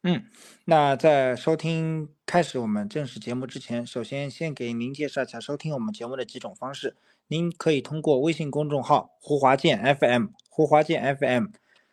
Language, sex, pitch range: Chinese, male, 125-165 Hz